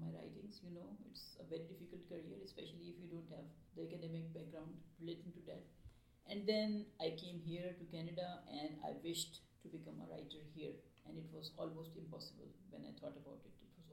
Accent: Indian